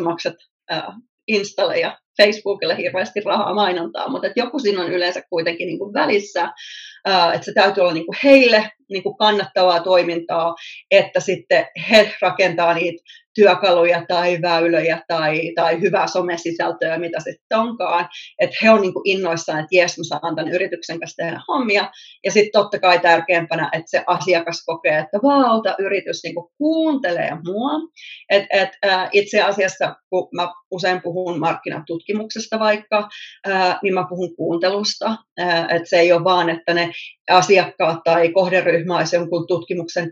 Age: 30-49